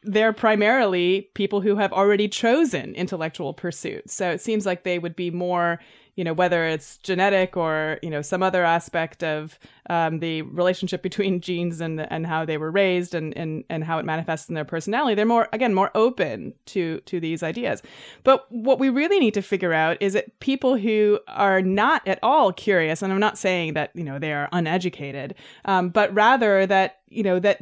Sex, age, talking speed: female, 20-39, 200 wpm